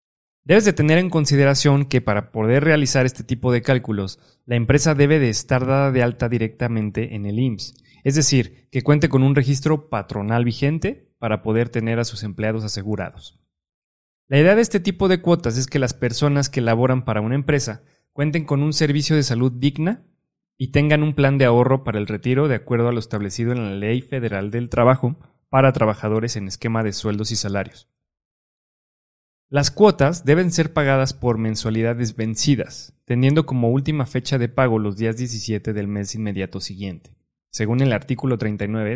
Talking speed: 180 wpm